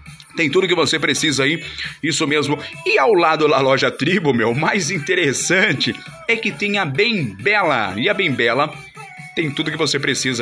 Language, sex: Portuguese, male